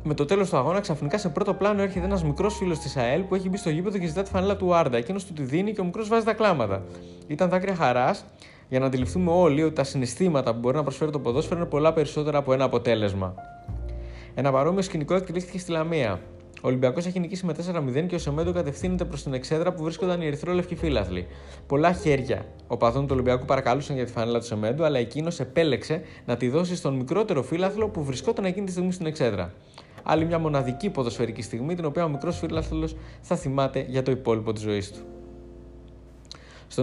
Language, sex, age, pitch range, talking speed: Greek, male, 20-39, 125-180 Hz, 205 wpm